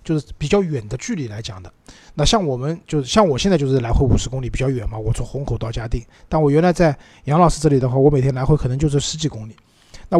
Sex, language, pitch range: male, Chinese, 125-160 Hz